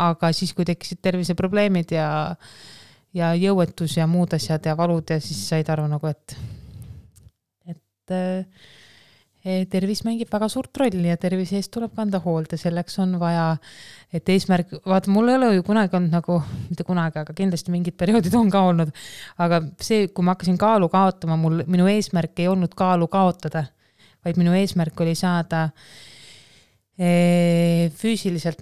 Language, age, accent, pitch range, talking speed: English, 20-39, Finnish, 155-185 Hz, 155 wpm